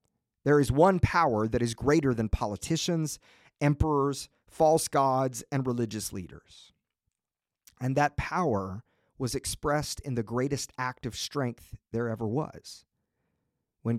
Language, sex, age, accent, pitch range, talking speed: English, male, 40-59, American, 110-150 Hz, 130 wpm